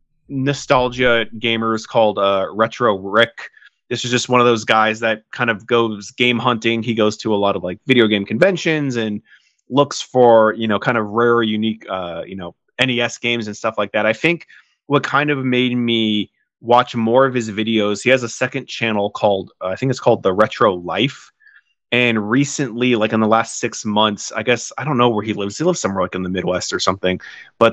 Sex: male